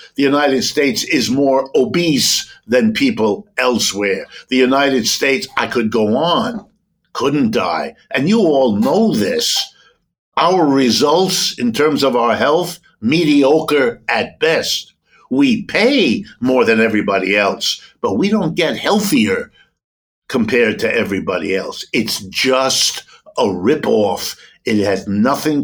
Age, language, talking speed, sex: 60-79, English, 130 wpm, male